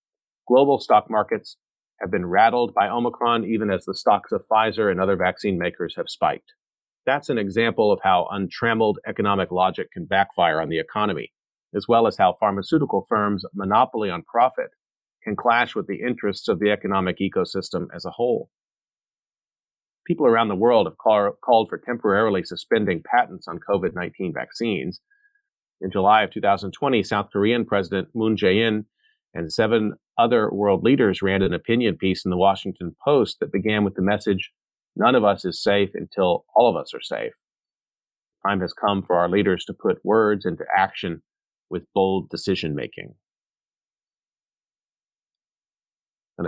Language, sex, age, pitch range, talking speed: English, male, 40-59, 90-110 Hz, 155 wpm